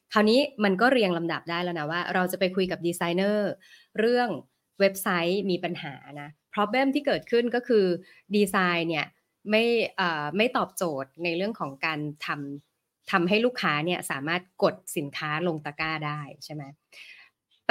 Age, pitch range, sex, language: 20-39, 160-210 Hz, female, Thai